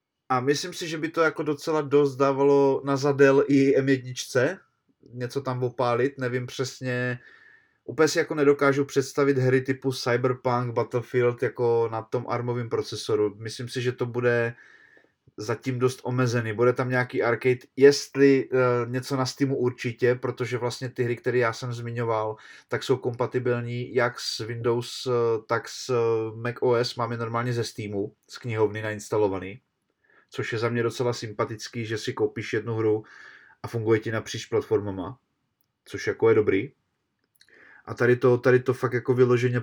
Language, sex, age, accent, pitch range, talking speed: Czech, male, 20-39, native, 115-130 Hz, 155 wpm